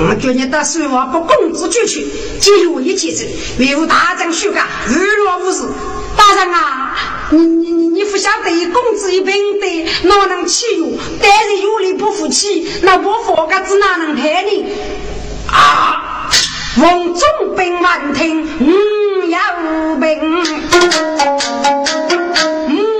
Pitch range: 290-380 Hz